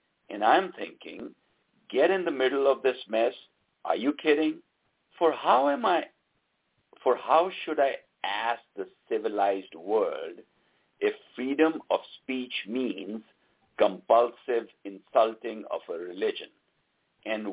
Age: 60-79